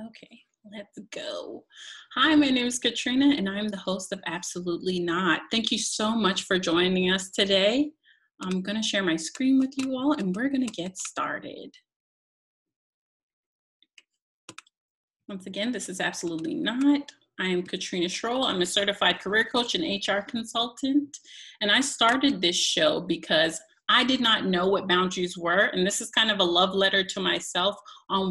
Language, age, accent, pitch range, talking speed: English, 30-49, American, 185-270 Hz, 165 wpm